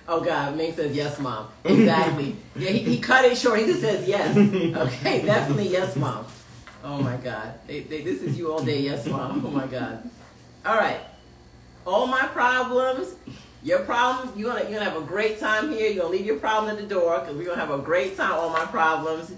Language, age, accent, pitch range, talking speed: English, 40-59, American, 125-200 Hz, 215 wpm